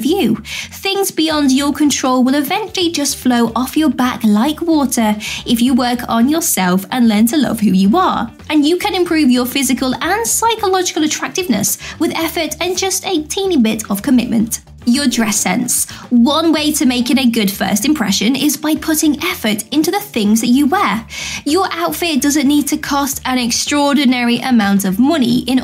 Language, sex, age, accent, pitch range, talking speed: English, female, 20-39, British, 230-310 Hz, 185 wpm